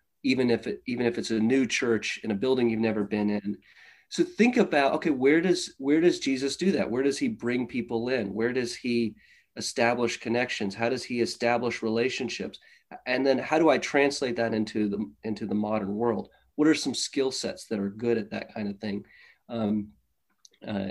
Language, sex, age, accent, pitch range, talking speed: English, male, 40-59, American, 110-140 Hz, 205 wpm